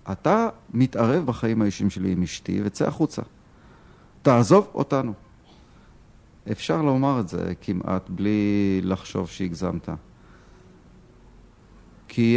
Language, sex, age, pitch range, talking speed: Hebrew, male, 50-69, 95-125 Hz, 95 wpm